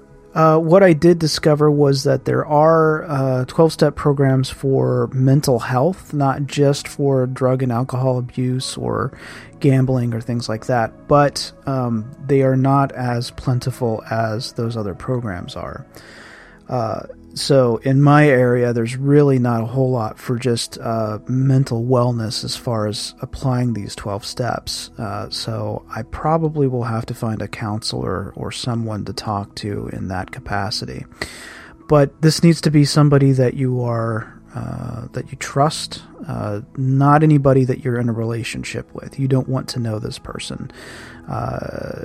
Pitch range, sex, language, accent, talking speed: 115-140 Hz, male, English, American, 160 wpm